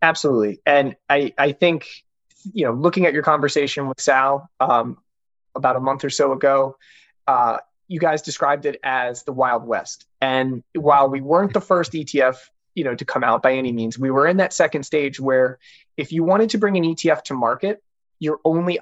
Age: 20-39